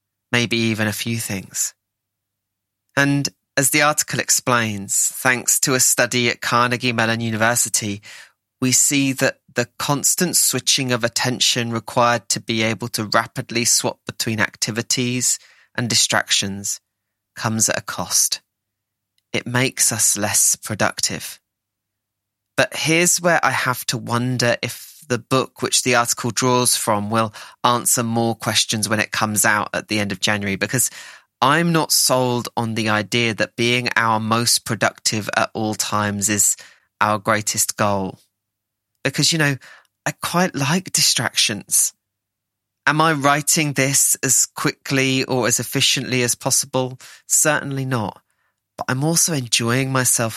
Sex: male